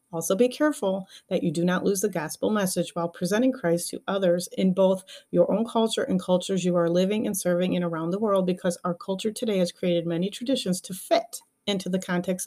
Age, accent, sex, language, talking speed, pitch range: 40-59, American, female, English, 215 wpm, 175-215 Hz